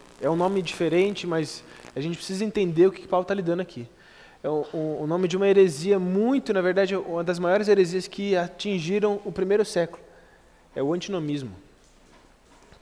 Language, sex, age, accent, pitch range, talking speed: Portuguese, male, 20-39, Brazilian, 155-195 Hz, 185 wpm